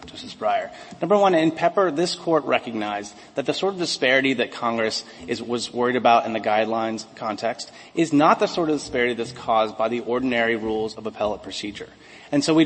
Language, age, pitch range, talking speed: English, 30-49, 115-180 Hz, 200 wpm